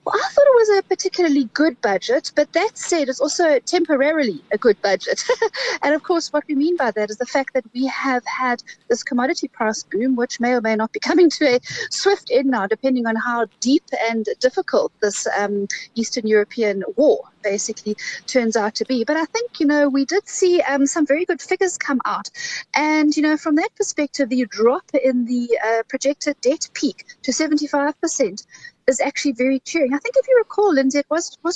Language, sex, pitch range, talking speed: English, female, 240-340 Hz, 210 wpm